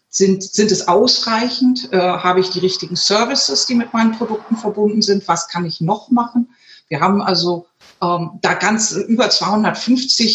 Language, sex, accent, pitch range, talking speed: German, female, German, 175-215 Hz, 170 wpm